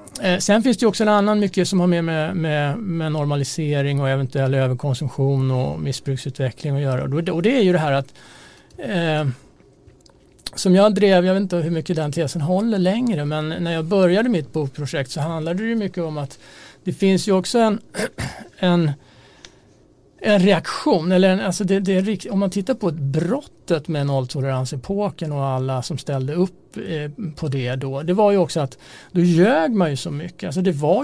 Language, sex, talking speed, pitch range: Swedish, male, 195 wpm, 140-185 Hz